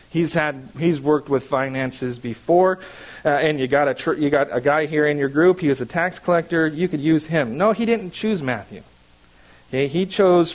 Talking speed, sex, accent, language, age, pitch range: 215 wpm, male, American, English, 40-59, 135-180 Hz